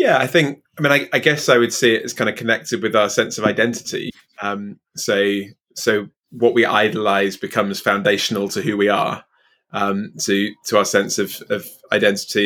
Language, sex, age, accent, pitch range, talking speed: English, male, 20-39, British, 110-130 Hz, 195 wpm